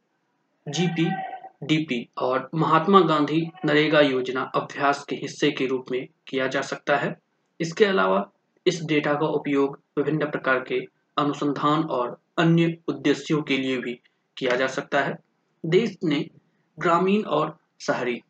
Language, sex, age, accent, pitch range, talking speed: Hindi, male, 20-39, native, 135-165 Hz, 140 wpm